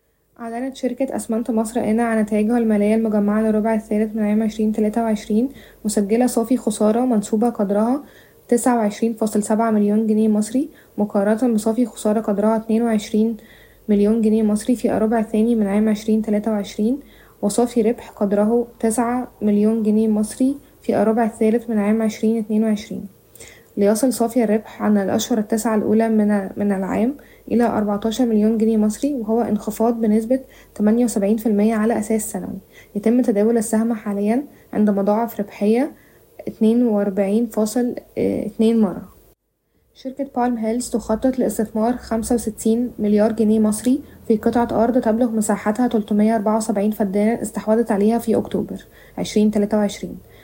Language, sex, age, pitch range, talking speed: Arabic, female, 20-39, 210-230 Hz, 130 wpm